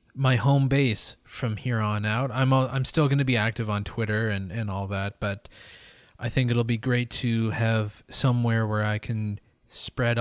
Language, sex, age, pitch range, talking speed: English, male, 20-39, 115-145 Hz, 195 wpm